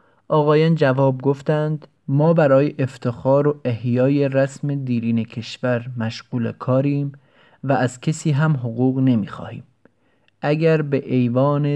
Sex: male